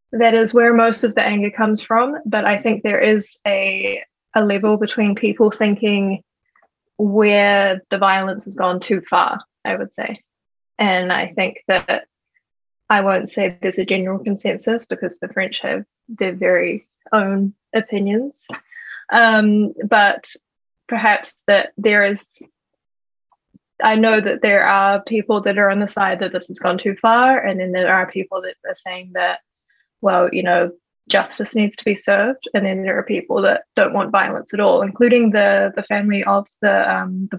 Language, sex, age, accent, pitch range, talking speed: English, female, 10-29, Australian, 195-220 Hz, 175 wpm